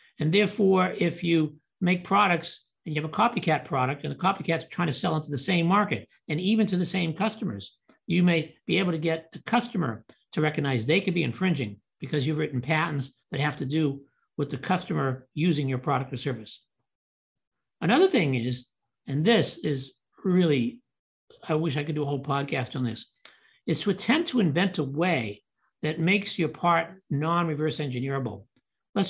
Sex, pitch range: male, 140-180 Hz